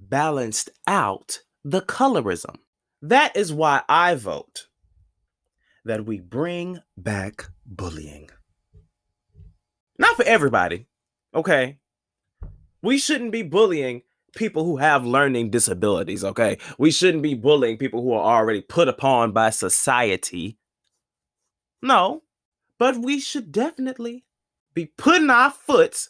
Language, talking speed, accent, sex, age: English, 115 wpm, American, male, 20-39